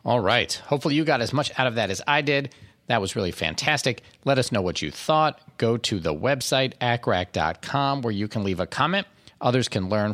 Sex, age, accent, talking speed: male, 40-59, American, 220 wpm